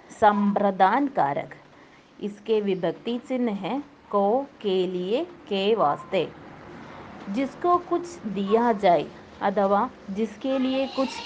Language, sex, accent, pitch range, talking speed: Hindi, female, native, 190-255 Hz, 85 wpm